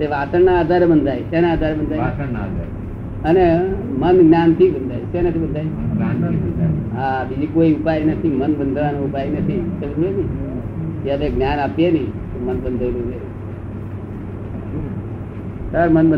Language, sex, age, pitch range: Gujarati, male, 50-69, 105-170 Hz